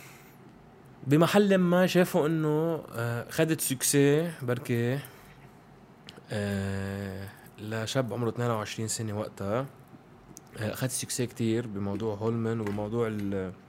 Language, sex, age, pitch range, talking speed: Arabic, male, 20-39, 105-135 Hz, 80 wpm